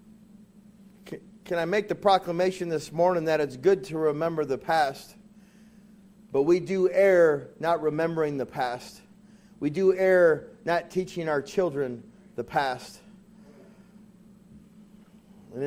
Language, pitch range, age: English, 155-205 Hz, 40-59